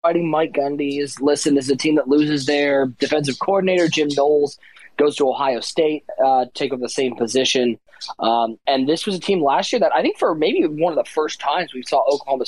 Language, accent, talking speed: English, American, 215 wpm